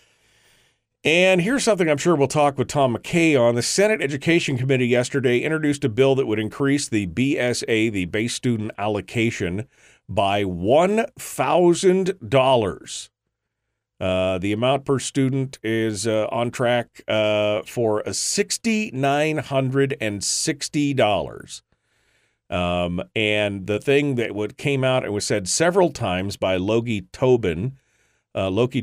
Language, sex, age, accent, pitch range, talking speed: English, male, 40-59, American, 105-140 Hz, 125 wpm